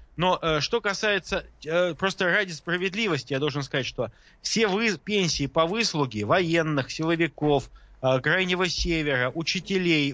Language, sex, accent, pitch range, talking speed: Russian, male, native, 140-185 Hz, 130 wpm